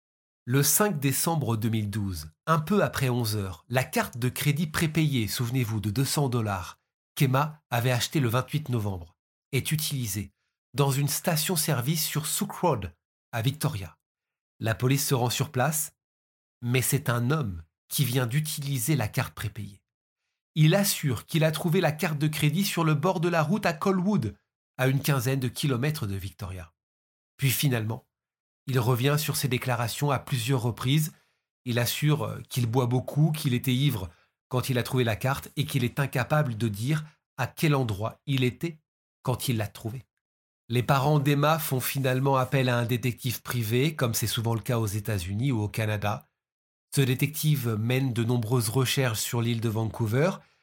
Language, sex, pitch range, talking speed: French, male, 115-150 Hz, 170 wpm